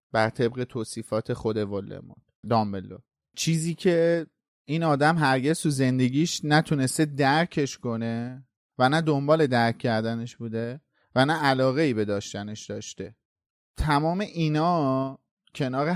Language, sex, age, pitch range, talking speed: Persian, male, 30-49, 125-155 Hz, 115 wpm